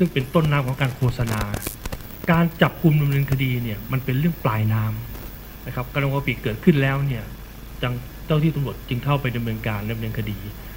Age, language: 60-79, Thai